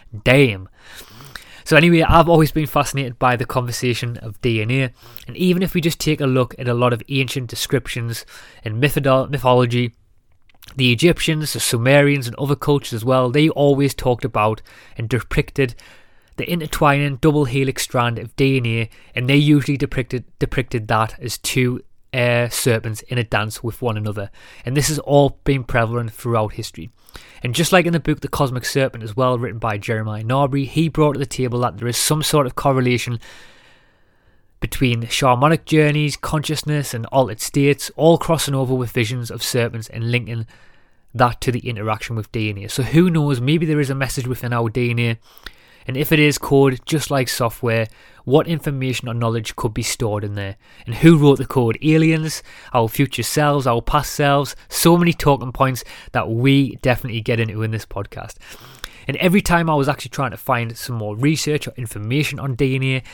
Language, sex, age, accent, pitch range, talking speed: English, male, 20-39, British, 115-145 Hz, 180 wpm